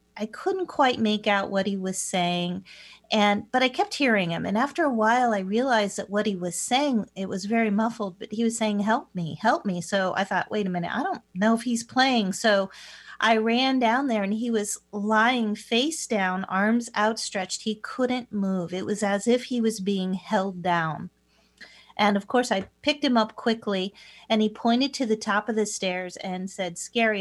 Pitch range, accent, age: 180-225 Hz, American, 40-59